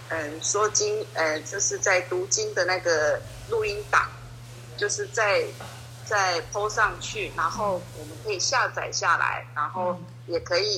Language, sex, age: Chinese, female, 30-49